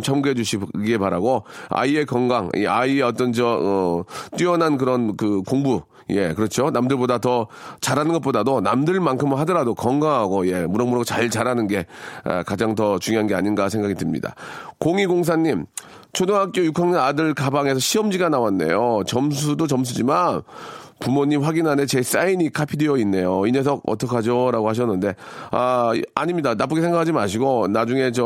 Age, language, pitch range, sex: 40-59, Korean, 105-155 Hz, male